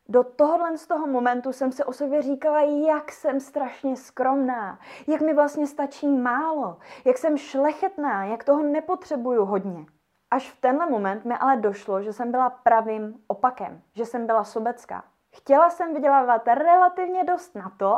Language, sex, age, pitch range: Czech, female, 20-39, 205-275 Hz